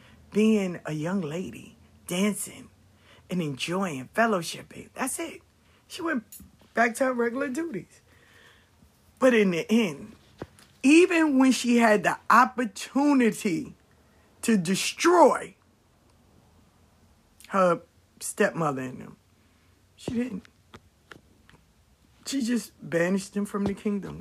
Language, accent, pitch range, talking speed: English, American, 130-210 Hz, 105 wpm